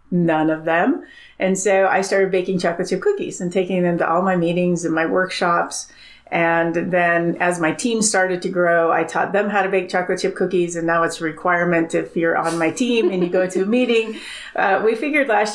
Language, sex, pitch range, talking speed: English, female, 170-205 Hz, 225 wpm